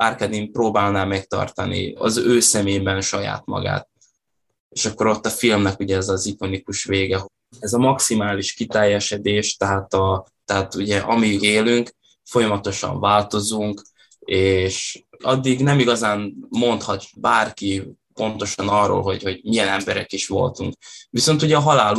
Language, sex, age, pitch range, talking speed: Hungarian, male, 20-39, 100-120 Hz, 130 wpm